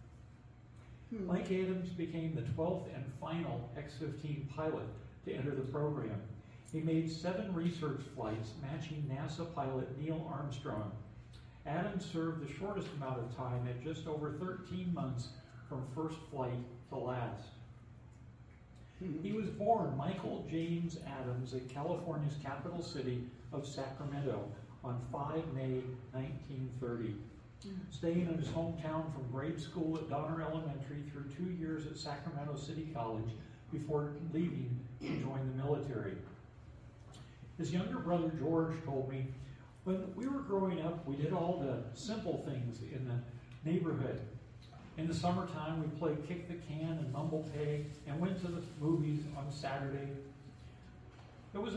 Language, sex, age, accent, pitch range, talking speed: English, male, 50-69, American, 130-165 Hz, 140 wpm